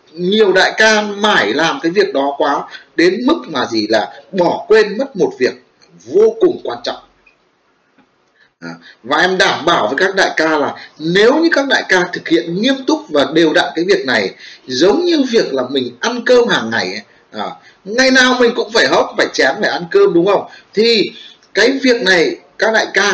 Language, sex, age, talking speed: Vietnamese, male, 30-49, 195 wpm